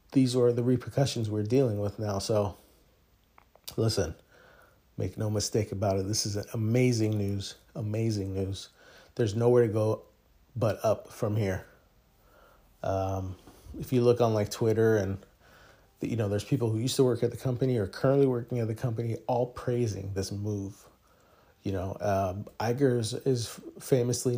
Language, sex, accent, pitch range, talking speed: English, male, American, 100-120 Hz, 160 wpm